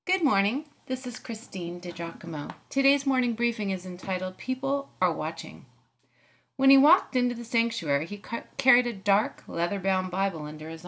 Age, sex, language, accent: 30-49, female, English, American